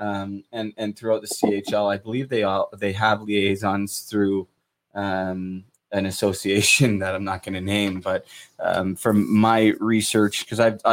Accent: American